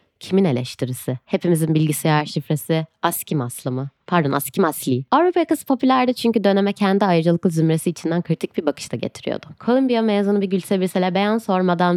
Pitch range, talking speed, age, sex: 160-205 Hz, 155 wpm, 20-39, female